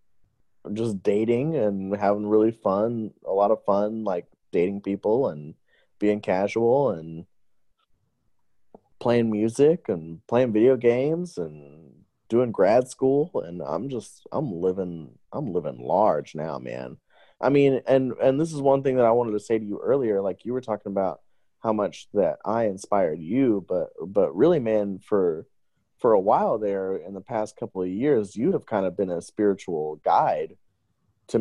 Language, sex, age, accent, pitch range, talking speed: English, male, 20-39, American, 95-120 Hz, 170 wpm